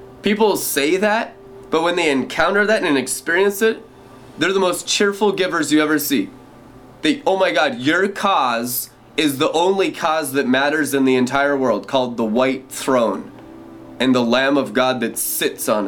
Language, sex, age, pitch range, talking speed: English, male, 20-39, 115-145 Hz, 180 wpm